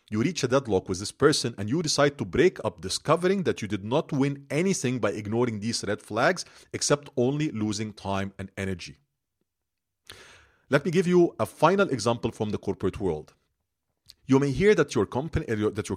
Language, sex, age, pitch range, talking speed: English, male, 40-59, 110-165 Hz, 180 wpm